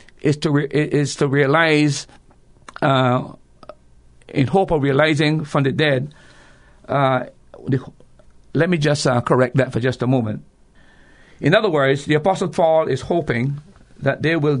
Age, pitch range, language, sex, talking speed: 50-69, 125-155 Hz, English, male, 145 wpm